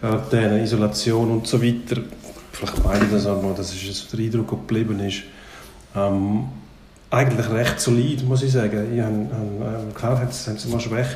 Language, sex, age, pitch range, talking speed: German, male, 40-59, 105-120 Hz, 185 wpm